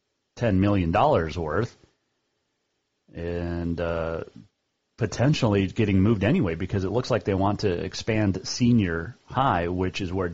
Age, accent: 30-49, American